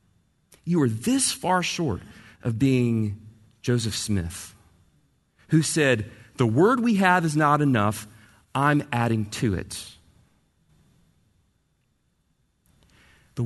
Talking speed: 105 wpm